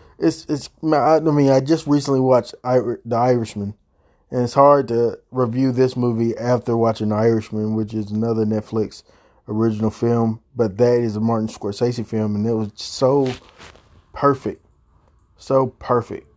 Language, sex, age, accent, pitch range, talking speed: English, male, 20-39, American, 110-130 Hz, 145 wpm